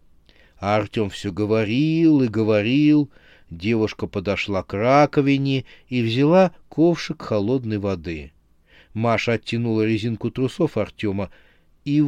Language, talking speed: Russian, 100 wpm